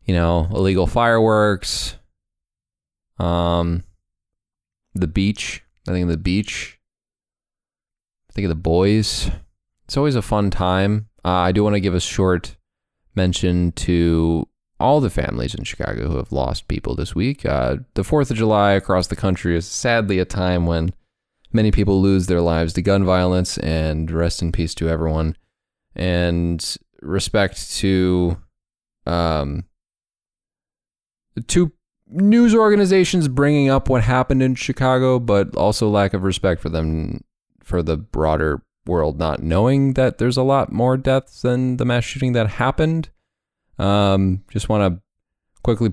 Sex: male